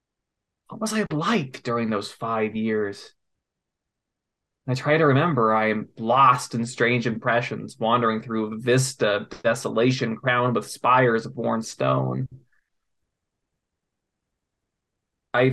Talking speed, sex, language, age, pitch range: 110 wpm, male, English, 20-39, 115-135 Hz